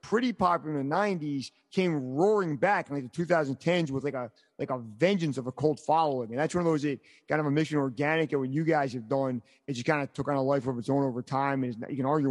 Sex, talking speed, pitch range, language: male, 280 wpm, 145-185 Hz, English